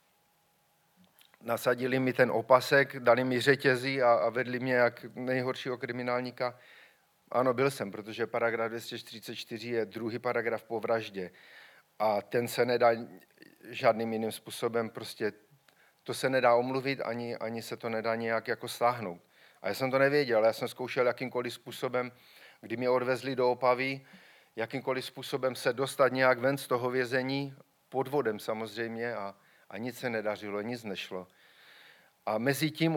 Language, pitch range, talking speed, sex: Czech, 115-130 Hz, 150 wpm, male